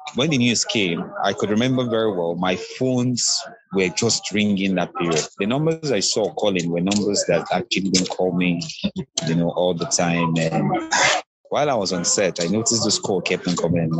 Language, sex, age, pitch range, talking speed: English, male, 30-49, 85-125 Hz, 195 wpm